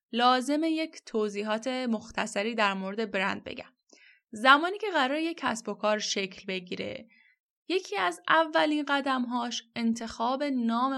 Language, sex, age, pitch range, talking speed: Persian, female, 10-29, 205-265 Hz, 125 wpm